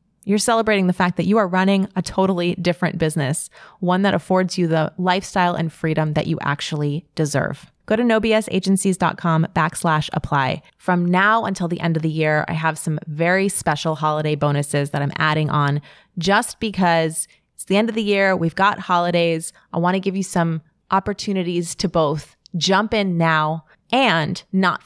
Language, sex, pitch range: English, female, 160-195 Hz